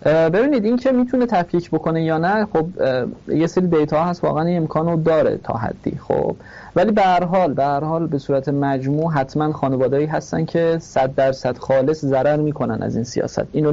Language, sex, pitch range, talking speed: Persian, male, 135-170 Hz, 175 wpm